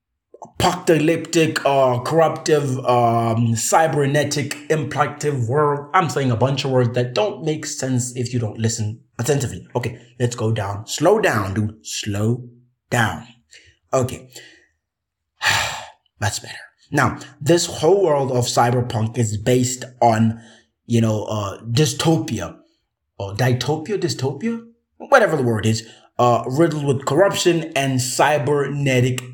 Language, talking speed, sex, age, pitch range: English, 125 wpm, male, 20-39, 120-165 Hz